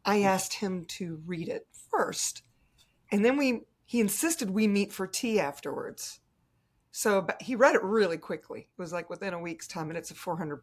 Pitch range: 165-215 Hz